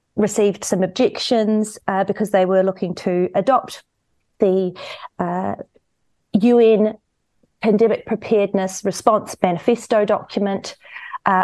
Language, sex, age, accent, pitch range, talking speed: English, female, 40-59, Australian, 185-220 Hz, 100 wpm